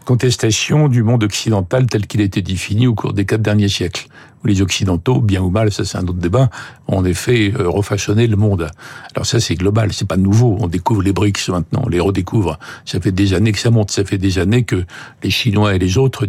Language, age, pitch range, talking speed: French, 60-79, 100-120 Hz, 230 wpm